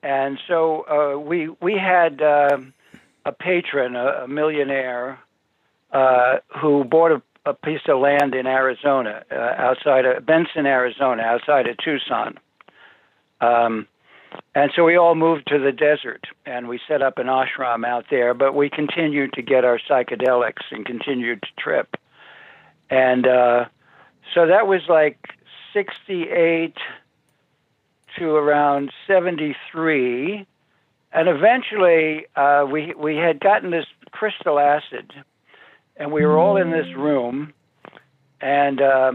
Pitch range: 130-165 Hz